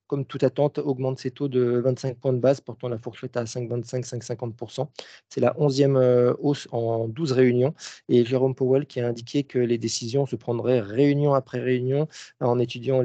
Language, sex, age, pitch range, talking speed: French, male, 40-59, 120-140 Hz, 195 wpm